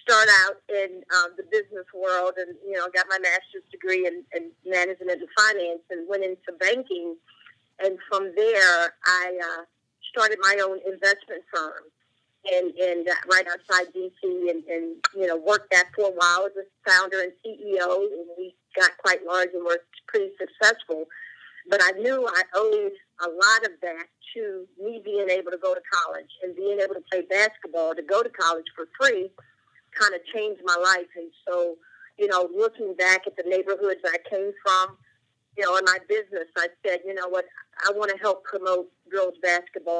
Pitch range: 175-215 Hz